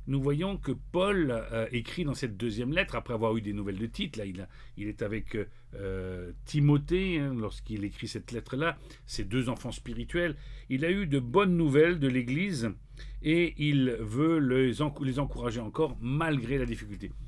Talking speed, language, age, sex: 175 wpm, French, 50-69, male